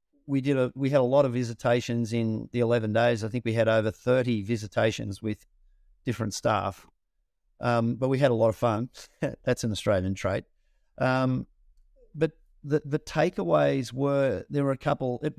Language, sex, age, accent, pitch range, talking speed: English, male, 50-69, Australian, 115-140 Hz, 180 wpm